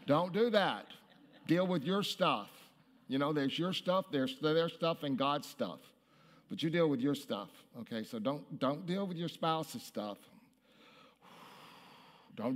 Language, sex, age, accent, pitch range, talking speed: English, male, 50-69, American, 135-225 Hz, 160 wpm